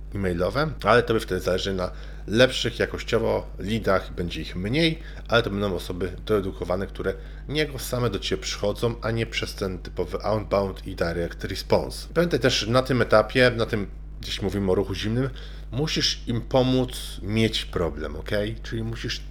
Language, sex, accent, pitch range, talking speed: Polish, male, native, 95-125 Hz, 165 wpm